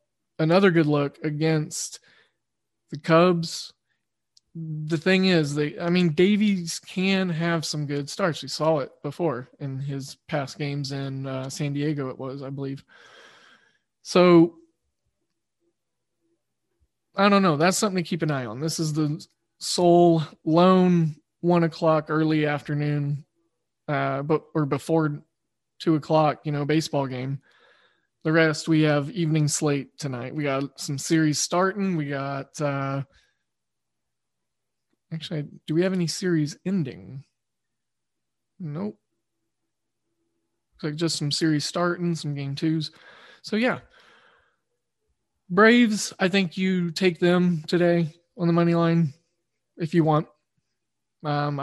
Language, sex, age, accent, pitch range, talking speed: English, male, 20-39, American, 140-175 Hz, 125 wpm